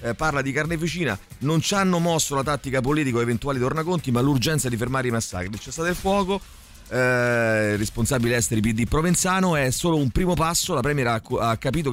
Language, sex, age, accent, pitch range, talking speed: Italian, male, 30-49, native, 105-140 Hz, 200 wpm